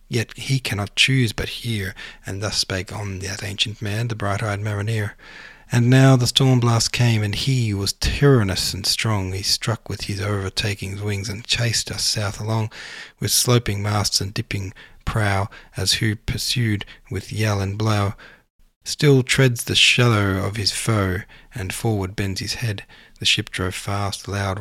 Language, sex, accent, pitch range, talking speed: English, male, Australian, 100-120 Hz, 165 wpm